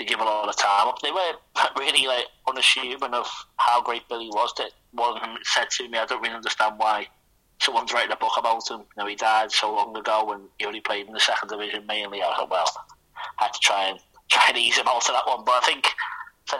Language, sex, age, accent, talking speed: English, male, 30-49, British, 255 wpm